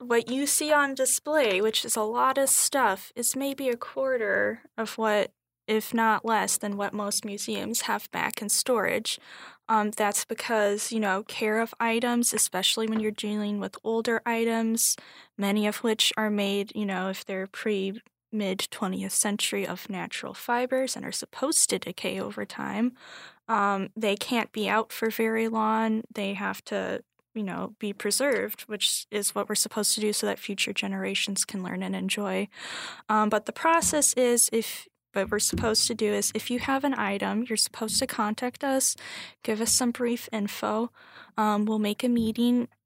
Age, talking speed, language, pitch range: 10-29, 180 wpm, English, 205-240 Hz